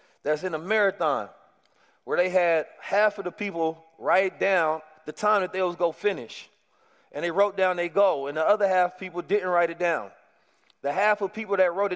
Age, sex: 30-49, male